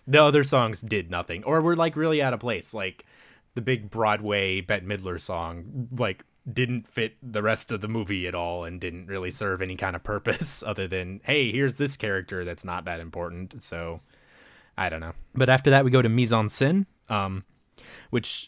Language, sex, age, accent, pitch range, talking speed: English, male, 20-39, American, 90-125 Hz, 200 wpm